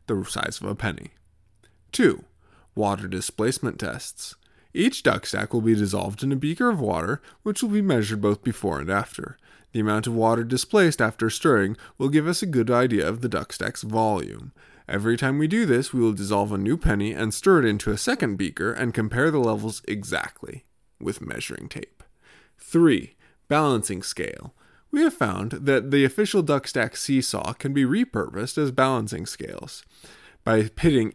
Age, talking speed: 20-39, 175 wpm